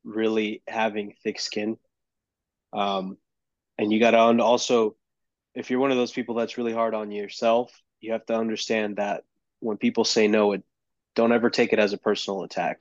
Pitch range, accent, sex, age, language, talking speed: 105-120 Hz, American, male, 20-39, English, 180 wpm